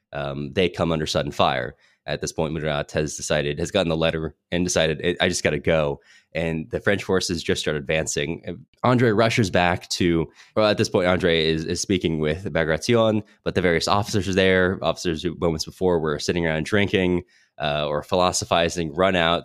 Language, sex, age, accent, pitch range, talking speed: English, male, 20-39, American, 80-110 Hz, 200 wpm